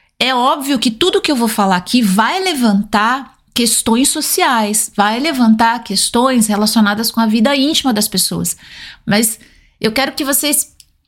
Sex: female